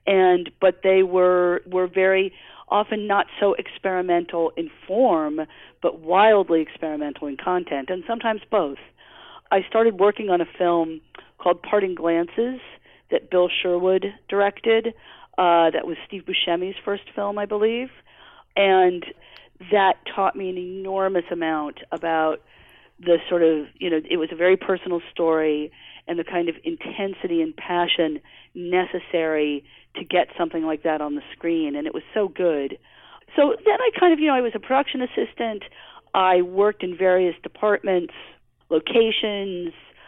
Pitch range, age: 170-210 Hz, 40-59